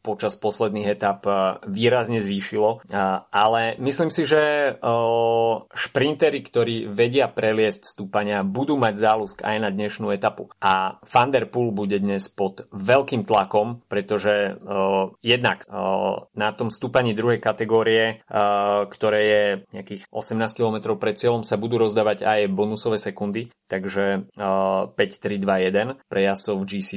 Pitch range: 100-115 Hz